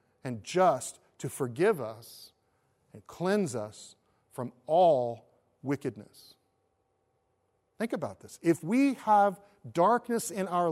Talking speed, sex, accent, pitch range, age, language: 110 wpm, male, American, 150-215 Hz, 40-59, English